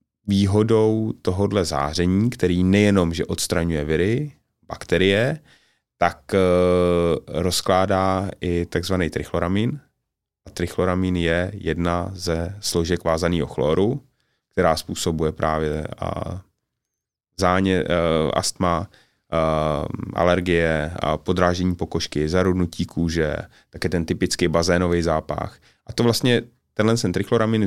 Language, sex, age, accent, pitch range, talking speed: Czech, male, 30-49, native, 85-100 Hz, 105 wpm